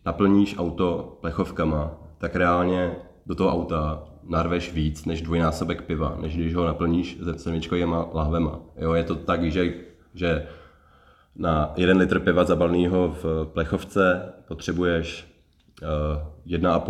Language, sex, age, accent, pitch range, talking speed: Czech, male, 30-49, native, 80-90 Hz, 125 wpm